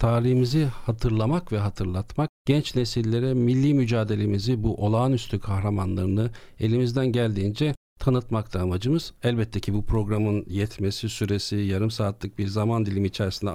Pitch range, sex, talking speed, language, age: 100-125 Hz, male, 125 wpm, Turkish, 50-69